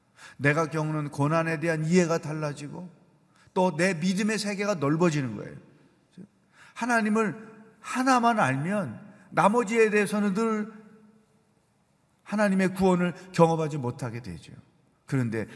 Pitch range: 130-185 Hz